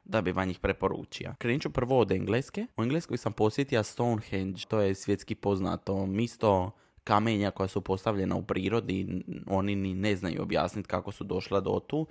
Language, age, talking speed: Croatian, 20-39, 165 wpm